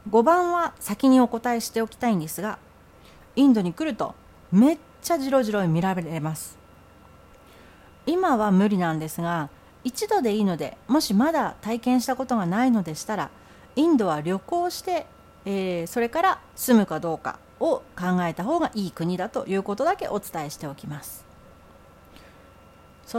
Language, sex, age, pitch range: Japanese, female, 40-59, 165-260 Hz